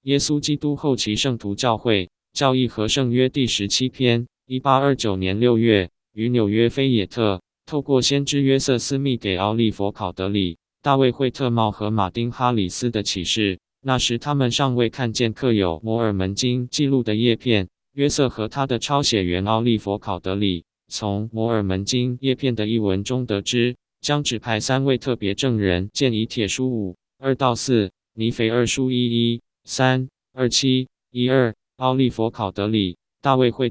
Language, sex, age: Chinese, male, 20-39